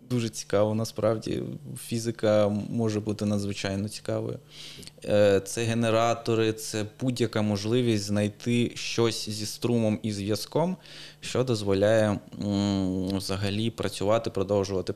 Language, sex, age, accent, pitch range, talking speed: Ukrainian, male, 20-39, native, 100-115 Hz, 95 wpm